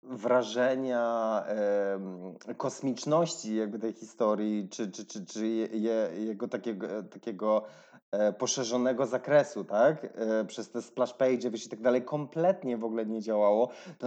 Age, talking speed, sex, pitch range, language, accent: 20-39, 140 wpm, male, 110-140 Hz, Polish, native